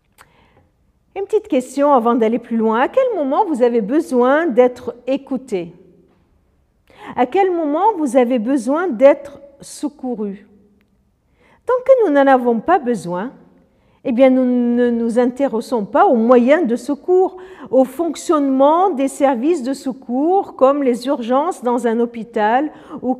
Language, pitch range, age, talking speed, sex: French, 240-295 Hz, 50-69, 140 wpm, female